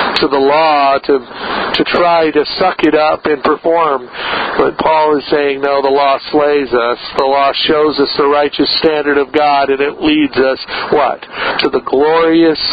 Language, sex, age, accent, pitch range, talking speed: English, male, 50-69, American, 135-160 Hz, 180 wpm